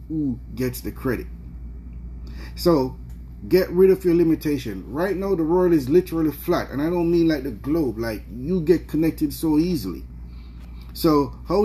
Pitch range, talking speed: 110-165 Hz, 165 wpm